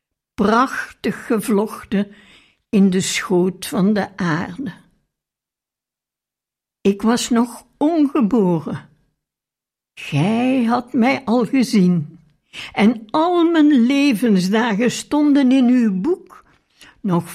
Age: 60-79